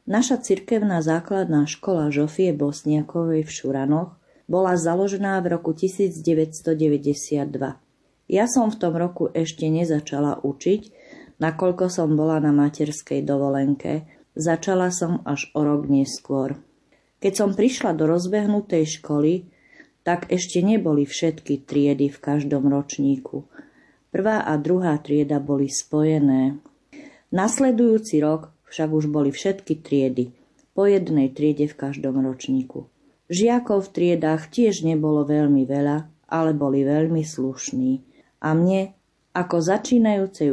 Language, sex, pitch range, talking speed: Slovak, female, 145-190 Hz, 120 wpm